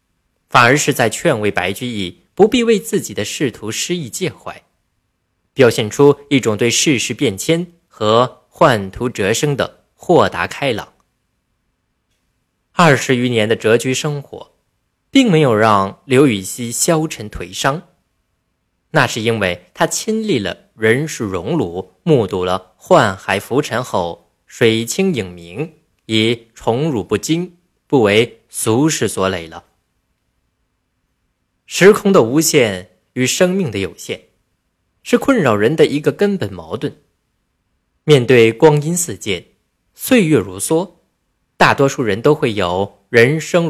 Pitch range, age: 100-160 Hz, 20-39